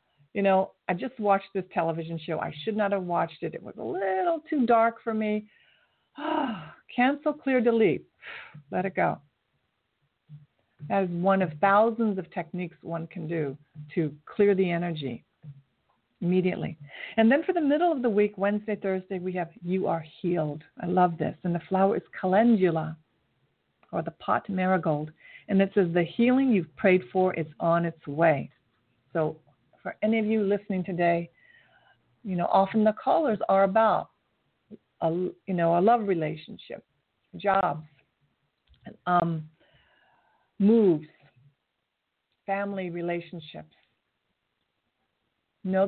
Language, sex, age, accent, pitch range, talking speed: English, female, 50-69, American, 165-215 Hz, 145 wpm